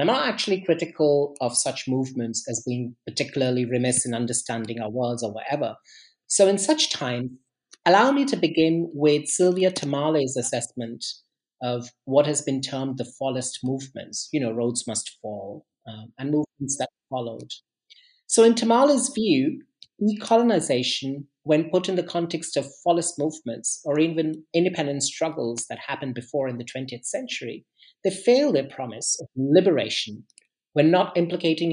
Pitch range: 125-175 Hz